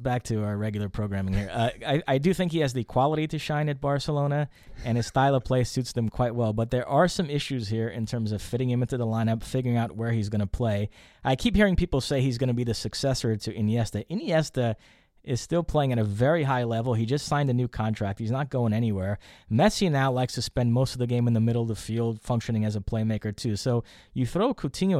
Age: 20-39